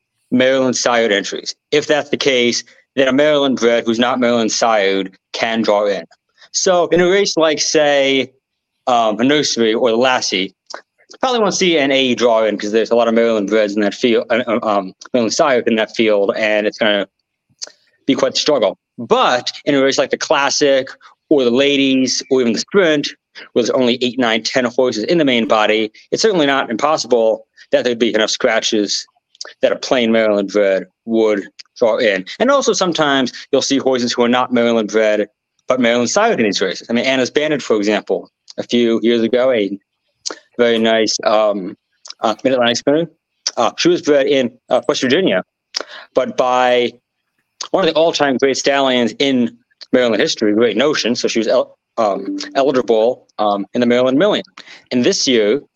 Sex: male